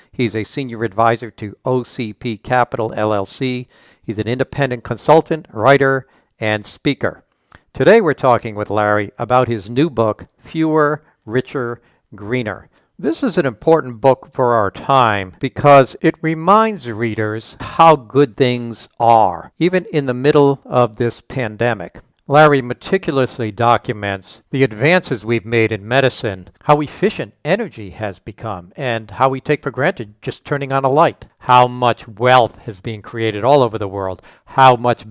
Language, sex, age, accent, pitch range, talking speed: English, male, 60-79, American, 110-140 Hz, 150 wpm